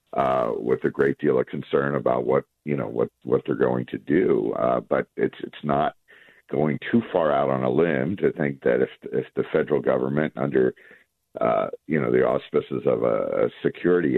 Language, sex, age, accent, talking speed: English, male, 60-79, American, 200 wpm